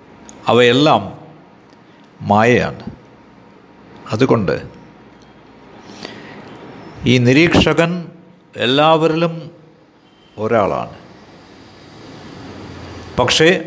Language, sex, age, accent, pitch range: Malayalam, male, 60-79, native, 115-165 Hz